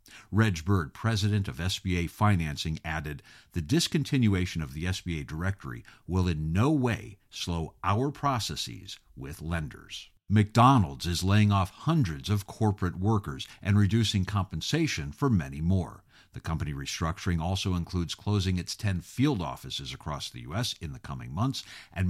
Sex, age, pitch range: male, 50-69, 85-115 Hz